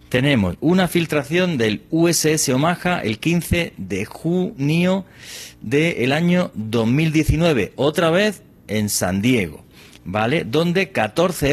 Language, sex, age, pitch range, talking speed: Spanish, male, 40-59, 105-165 Hz, 110 wpm